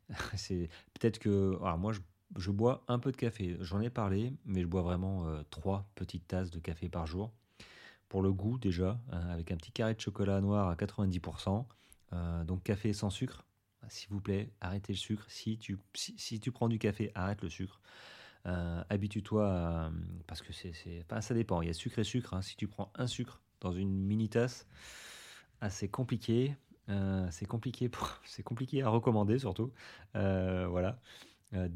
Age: 30-49